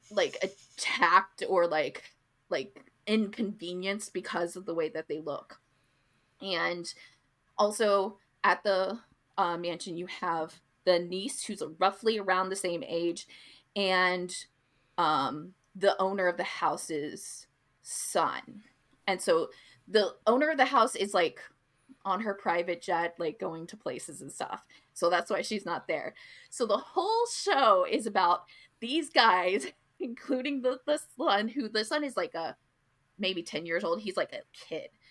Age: 20-39